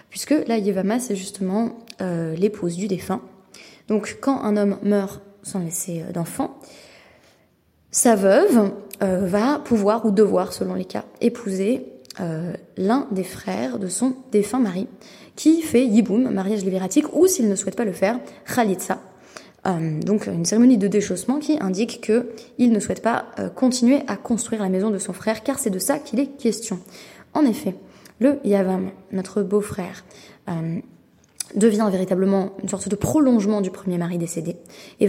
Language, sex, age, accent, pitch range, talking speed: French, female, 20-39, Belgian, 190-240 Hz, 165 wpm